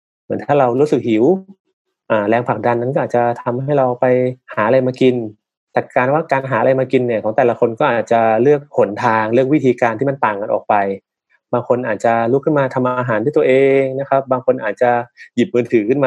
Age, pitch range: 20-39, 110-140 Hz